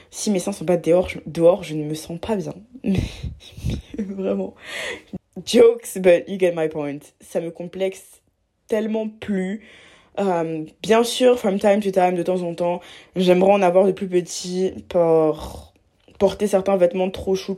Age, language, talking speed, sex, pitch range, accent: 20-39, French, 165 wpm, female, 160-200 Hz, French